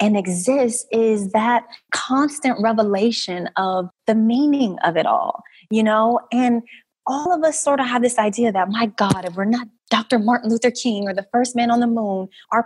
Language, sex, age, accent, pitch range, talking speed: English, female, 20-39, American, 205-250 Hz, 195 wpm